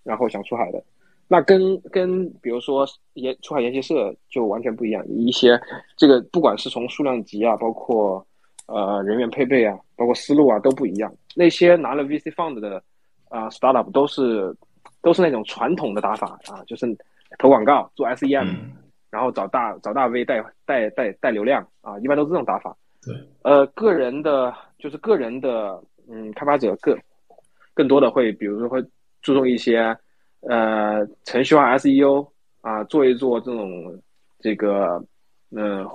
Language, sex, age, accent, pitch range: Chinese, male, 20-39, native, 110-140 Hz